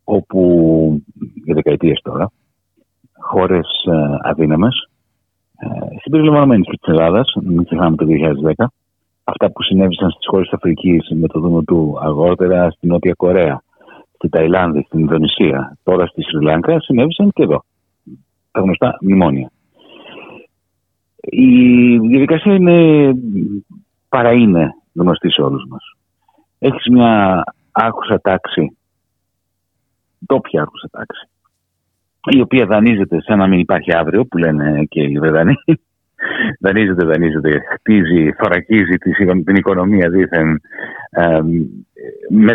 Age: 60-79